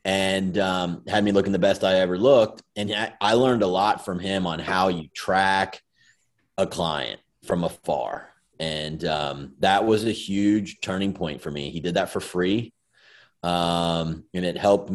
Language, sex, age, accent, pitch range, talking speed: English, male, 30-49, American, 80-95 Hz, 175 wpm